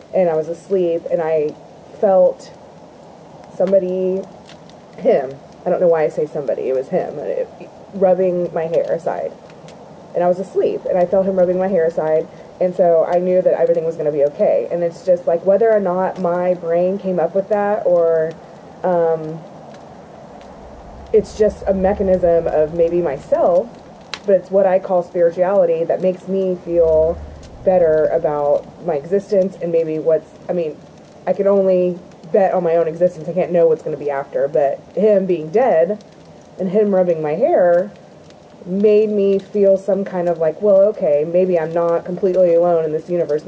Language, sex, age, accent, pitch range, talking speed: English, female, 20-39, American, 170-195 Hz, 180 wpm